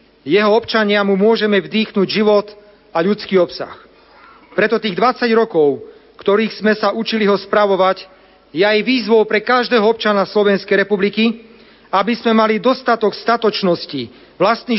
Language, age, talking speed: Slovak, 40-59, 135 wpm